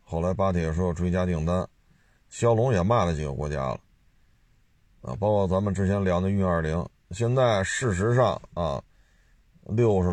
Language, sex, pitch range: Chinese, male, 85-110 Hz